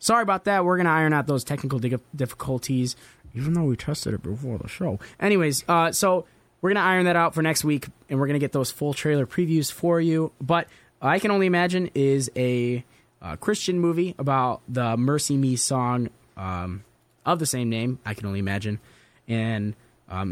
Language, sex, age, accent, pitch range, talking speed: English, male, 20-39, American, 110-150 Hz, 200 wpm